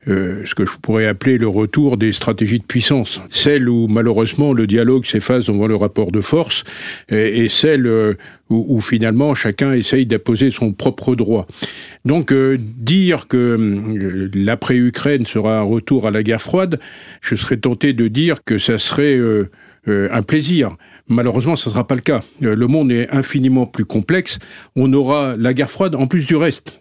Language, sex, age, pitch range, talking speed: French, male, 50-69, 110-135 Hz, 180 wpm